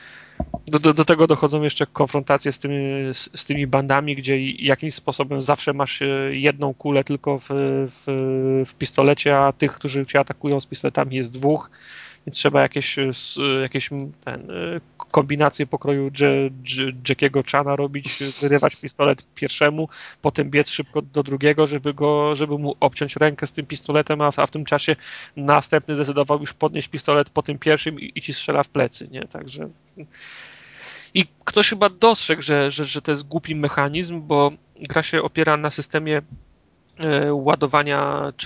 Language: Polish